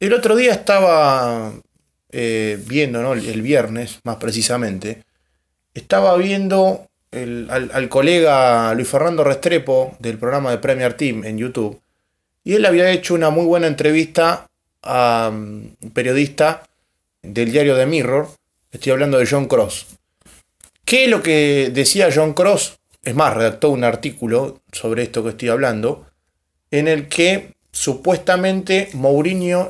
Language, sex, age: Spanish, male, 20-39